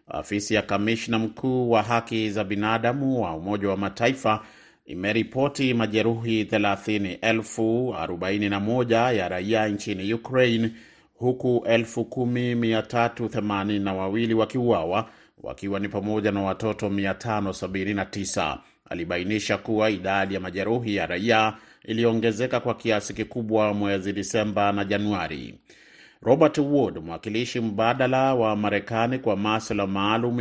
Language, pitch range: Swahili, 105-120 Hz